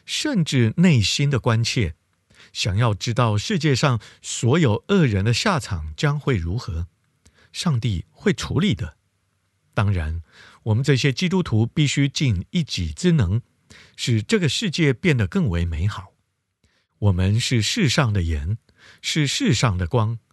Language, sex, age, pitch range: Chinese, male, 50-69, 100-145 Hz